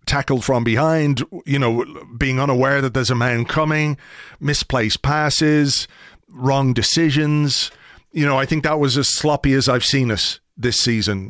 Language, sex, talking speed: English, male, 165 wpm